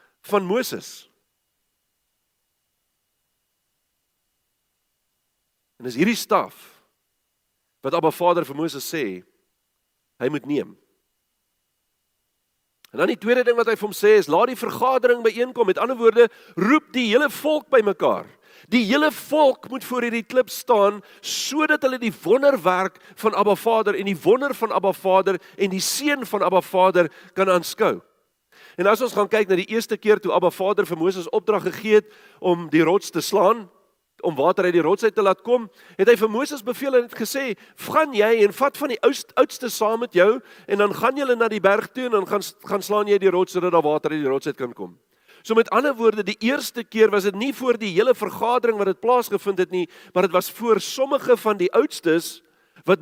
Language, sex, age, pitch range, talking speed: English, male, 50-69, 180-240 Hz, 195 wpm